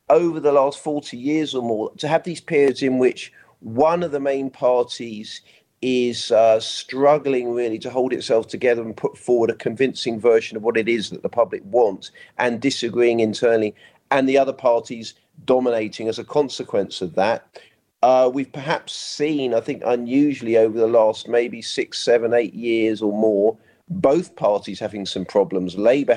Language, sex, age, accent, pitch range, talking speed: English, male, 40-59, British, 105-130 Hz, 175 wpm